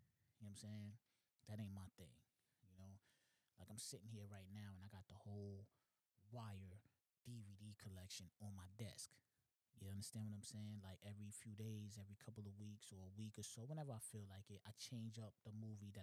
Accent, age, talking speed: American, 20-39, 210 wpm